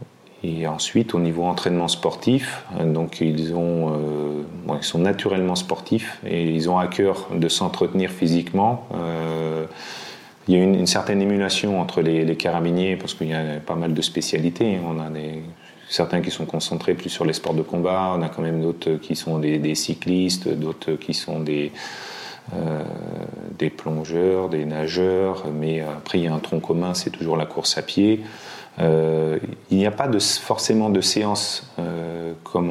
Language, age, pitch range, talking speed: French, 30-49, 80-95 Hz, 185 wpm